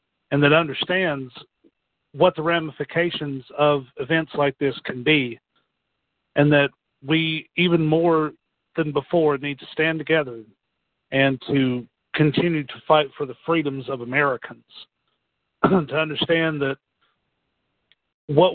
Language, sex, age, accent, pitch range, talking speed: English, male, 50-69, American, 140-160 Hz, 120 wpm